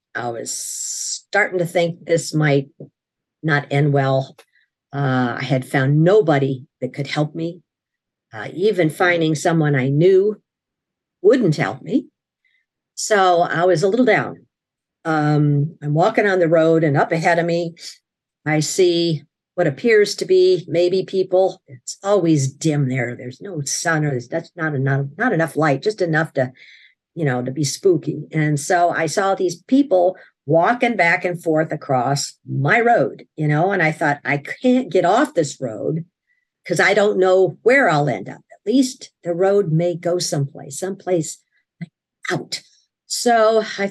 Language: English